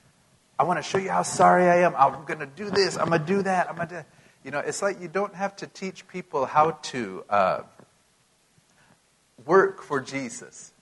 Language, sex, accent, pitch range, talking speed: English, male, American, 135-180 Hz, 210 wpm